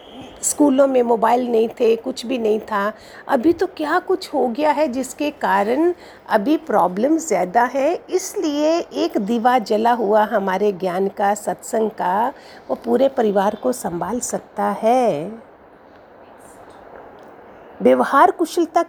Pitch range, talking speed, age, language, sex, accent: 210-275 Hz, 130 wpm, 50-69, Hindi, female, native